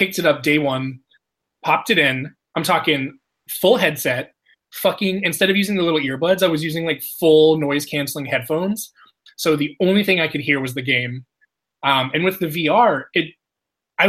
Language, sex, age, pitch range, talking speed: English, male, 20-39, 145-195 Hz, 185 wpm